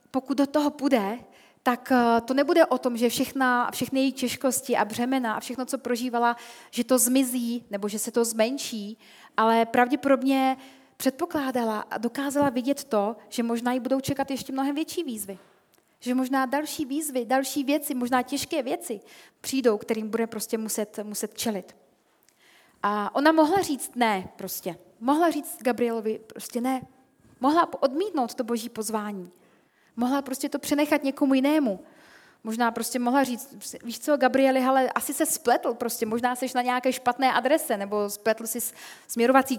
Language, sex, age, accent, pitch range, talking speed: Czech, female, 30-49, native, 225-275 Hz, 160 wpm